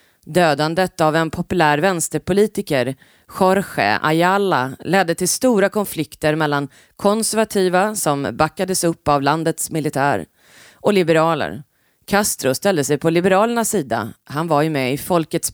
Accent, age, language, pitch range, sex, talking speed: native, 30-49, Swedish, 145-185 Hz, female, 125 wpm